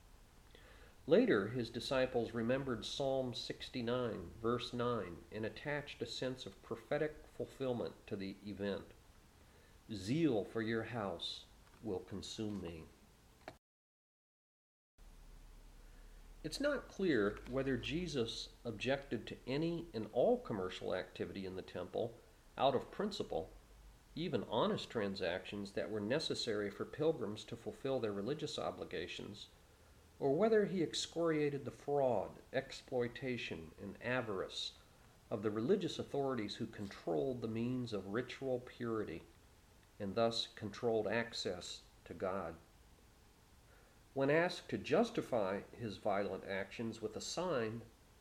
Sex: male